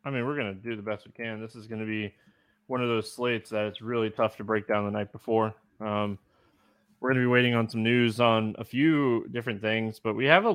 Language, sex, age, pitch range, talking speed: English, male, 20-39, 110-160 Hz, 250 wpm